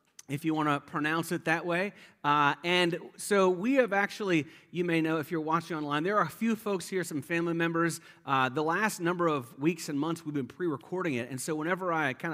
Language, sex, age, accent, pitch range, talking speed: English, male, 40-59, American, 140-185 Hz, 230 wpm